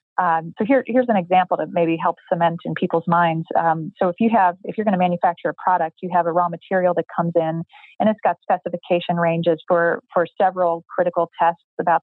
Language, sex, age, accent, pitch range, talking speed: English, female, 30-49, American, 165-190 Hz, 220 wpm